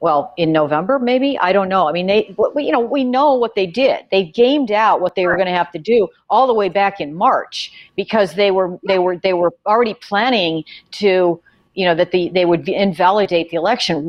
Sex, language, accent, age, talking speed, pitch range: female, English, American, 50-69, 230 wpm, 170-210 Hz